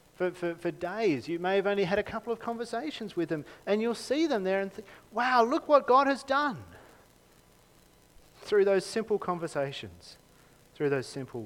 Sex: male